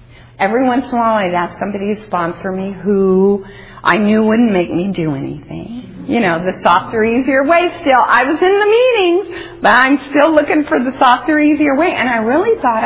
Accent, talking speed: American, 205 wpm